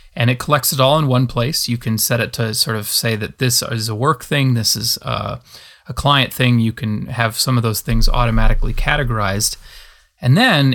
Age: 30-49